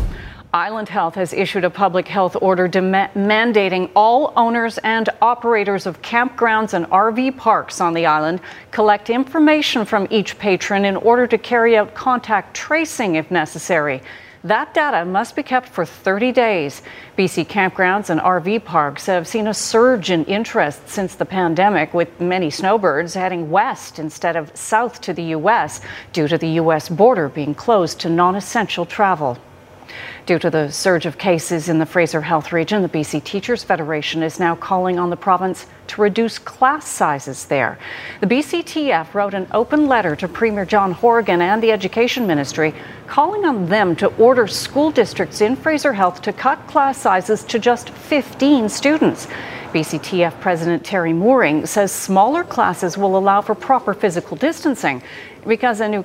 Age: 40-59